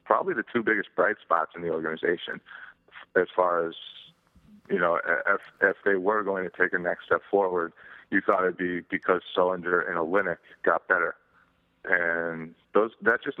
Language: English